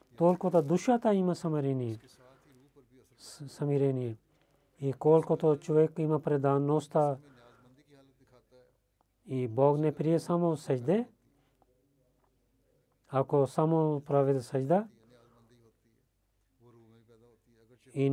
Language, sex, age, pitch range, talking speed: Bulgarian, male, 40-59, 125-155 Hz, 65 wpm